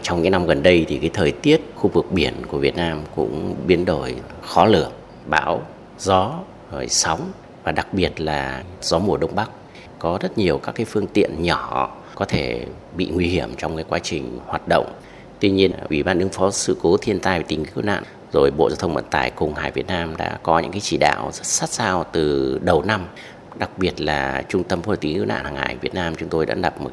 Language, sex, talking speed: Vietnamese, male, 240 wpm